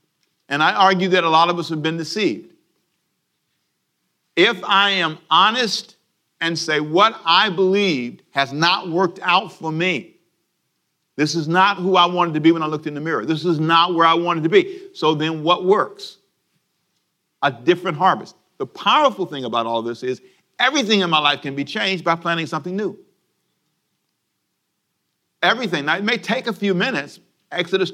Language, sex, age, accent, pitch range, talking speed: English, male, 50-69, American, 145-190 Hz, 175 wpm